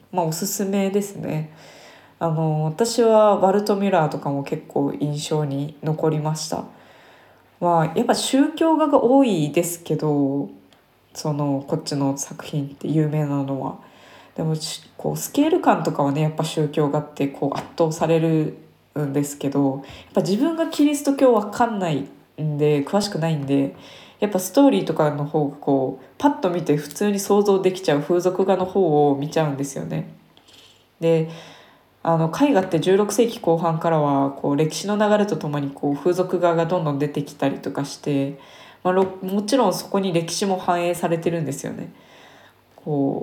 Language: Japanese